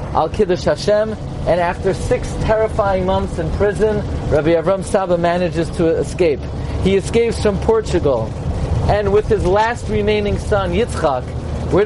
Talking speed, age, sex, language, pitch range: 135 wpm, 40-59, male, English, 180-225 Hz